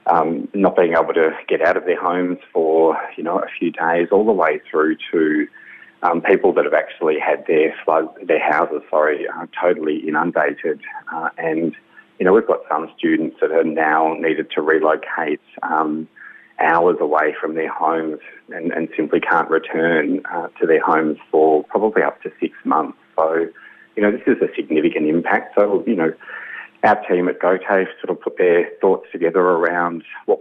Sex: male